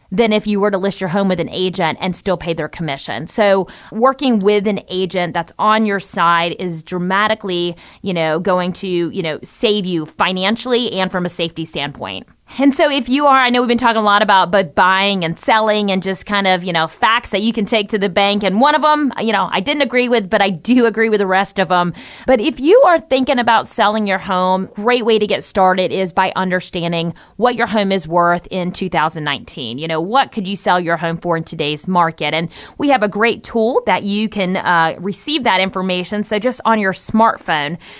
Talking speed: 230 wpm